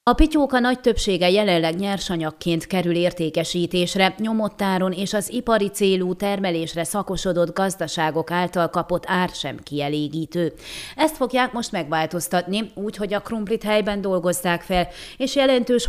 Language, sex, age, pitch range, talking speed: Hungarian, female, 30-49, 170-215 Hz, 130 wpm